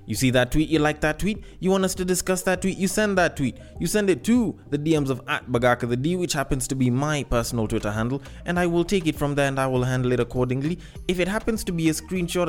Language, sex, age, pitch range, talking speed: English, male, 20-39, 120-165 Hz, 270 wpm